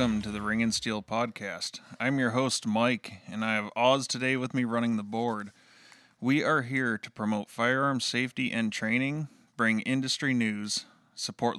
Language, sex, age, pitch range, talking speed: English, male, 20-39, 110-130 Hz, 175 wpm